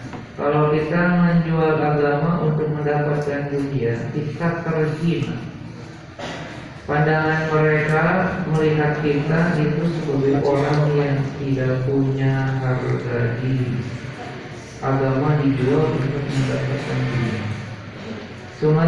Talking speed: 85 wpm